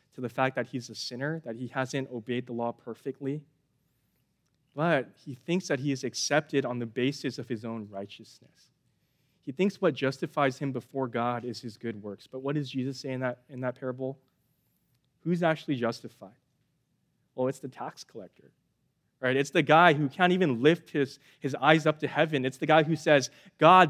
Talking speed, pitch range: 190 wpm, 130-165 Hz